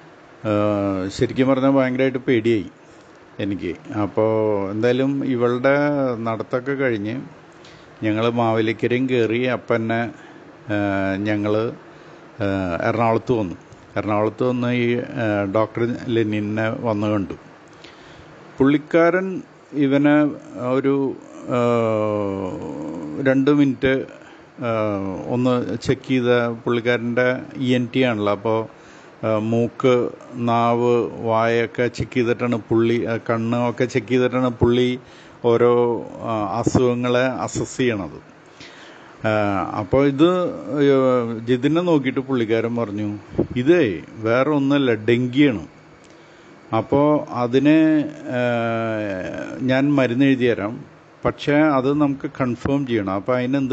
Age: 50-69